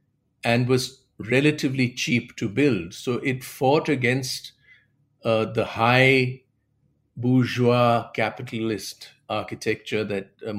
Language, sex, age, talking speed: English, male, 50-69, 100 wpm